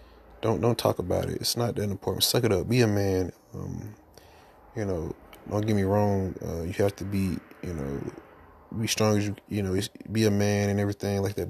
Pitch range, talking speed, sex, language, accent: 95-105 Hz, 220 wpm, male, English, American